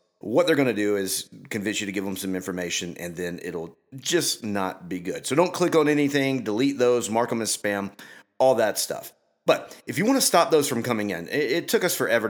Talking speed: 235 wpm